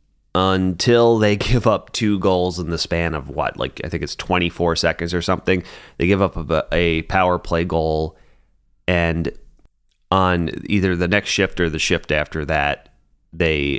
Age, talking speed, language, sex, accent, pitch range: 30-49, 165 wpm, English, male, American, 80-95 Hz